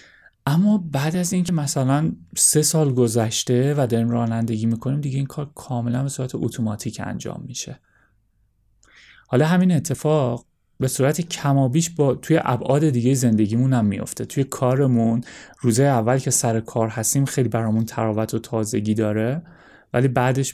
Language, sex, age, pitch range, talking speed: Persian, male, 30-49, 115-140 Hz, 145 wpm